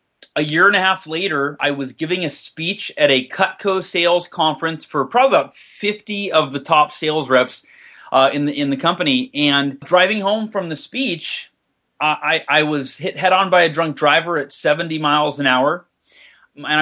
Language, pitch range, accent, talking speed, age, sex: English, 150-180 Hz, American, 185 wpm, 30-49, male